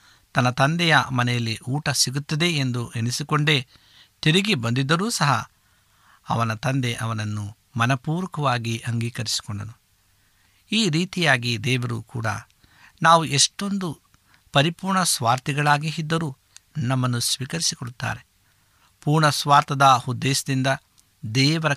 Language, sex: Kannada, male